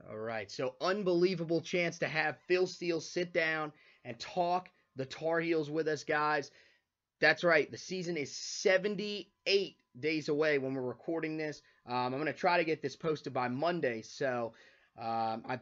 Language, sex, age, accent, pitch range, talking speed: English, male, 20-39, American, 145-185 Hz, 170 wpm